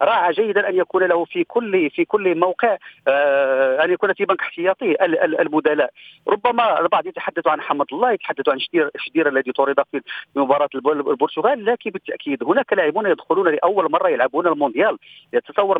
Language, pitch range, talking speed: Arabic, 155-210 Hz, 150 wpm